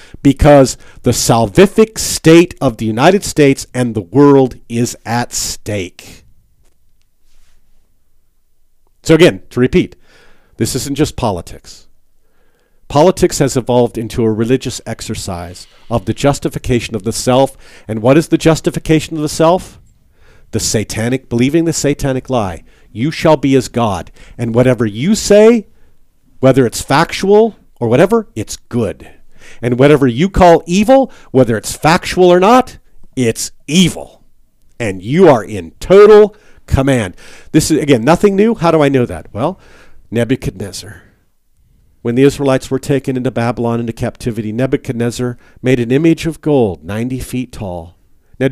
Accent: American